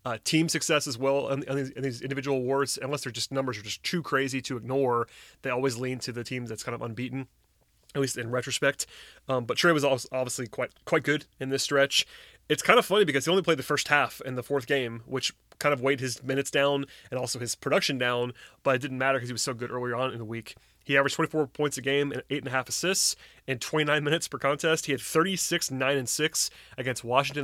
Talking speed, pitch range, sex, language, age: 230 wpm, 125-150 Hz, male, English, 30-49